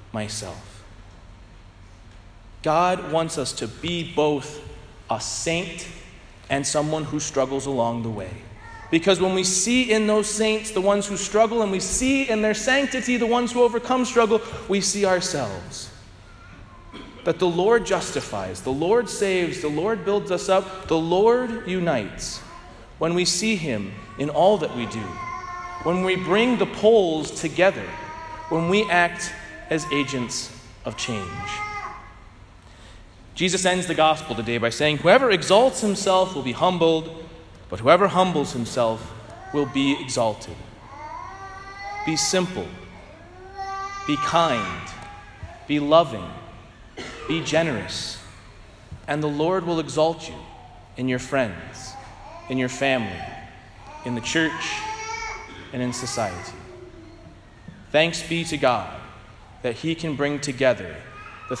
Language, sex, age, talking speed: English, male, 30-49, 130 wpm